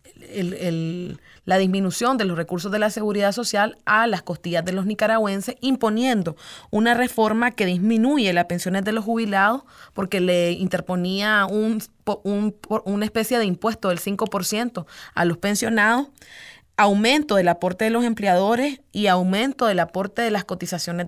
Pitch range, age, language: 180-225 Hz, 30-49, Spanish